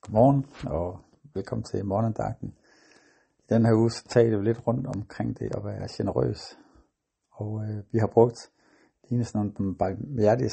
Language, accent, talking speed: Danish, native, 155 wpm